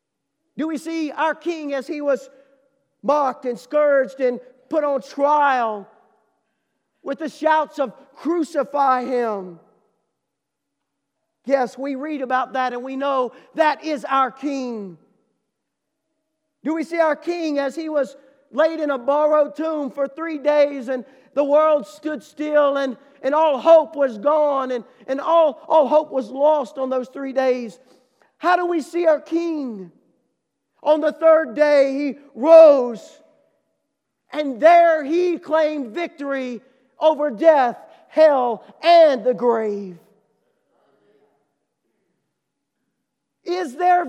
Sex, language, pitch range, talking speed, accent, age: male, English, 260-320 Hz, 130 wpm, American, 40-59